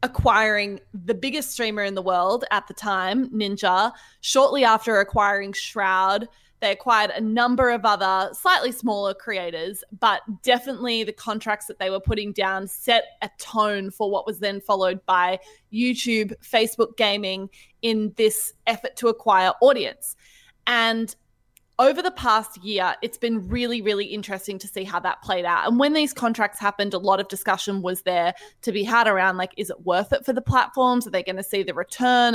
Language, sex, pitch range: English, female, 195-235 Hz